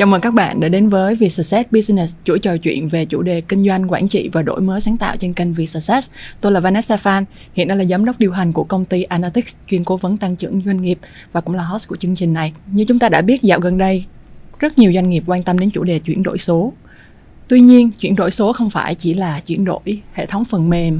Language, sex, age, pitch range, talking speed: Vietnamese, female, 20-39, 175-210 Hz, 265 wpm